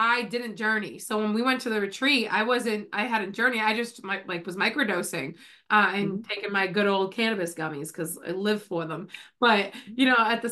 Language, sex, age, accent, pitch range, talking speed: English, female, 20-39, American, 205-260 Hz, 230 wpm